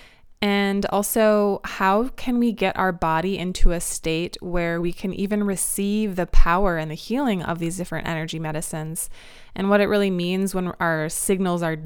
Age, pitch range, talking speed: 20-39, 175-205 Hz, 175 wpm